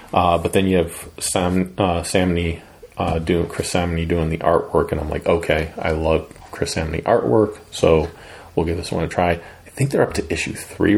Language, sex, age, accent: English, male, 30-49, American